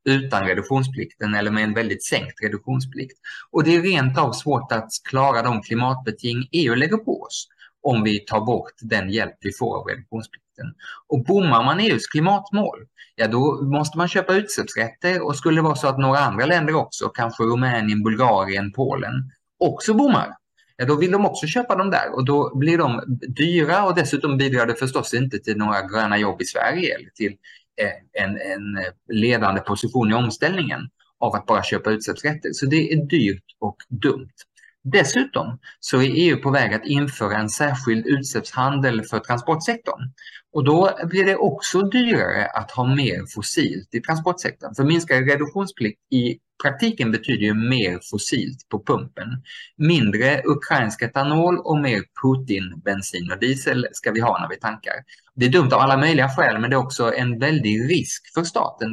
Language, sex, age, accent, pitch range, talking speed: Swedish, male, 20-39, Norwegian, 115-155 Hz, 170 wpm